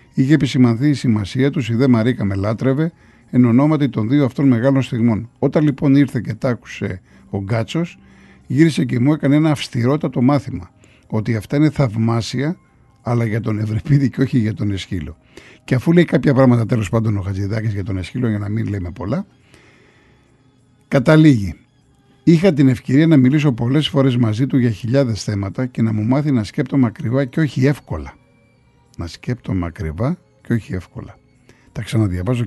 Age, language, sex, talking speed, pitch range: 50-69, Greek, male, 170 wpm, 110-140 Hz